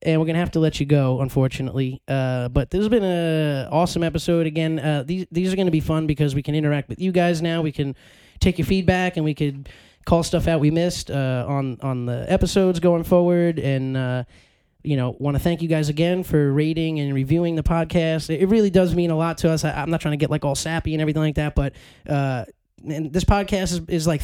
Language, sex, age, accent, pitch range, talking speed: English, male, 20-39, American, 140-170 Hz, 245 wpm